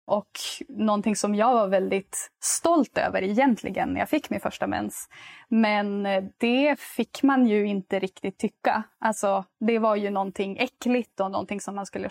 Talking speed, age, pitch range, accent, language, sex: 170 wpm, 20-39, 200-240 Hz, Swedish, English, female